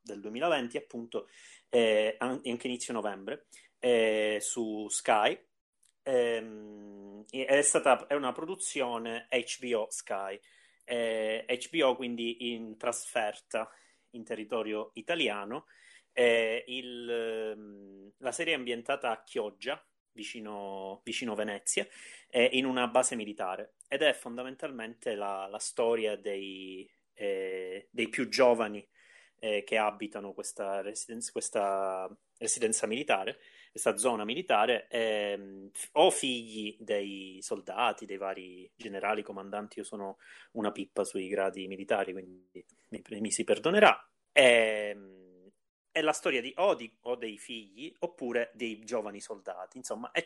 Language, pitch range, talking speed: Italian, 100-125 Hz, 120 wpm